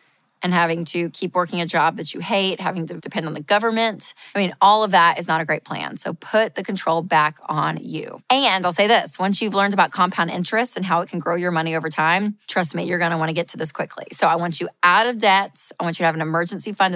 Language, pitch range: English, 170-210 Hz